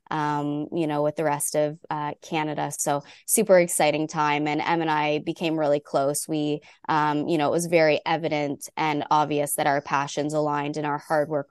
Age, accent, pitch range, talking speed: 20-39, American, 150-170 Hz, 200 wpm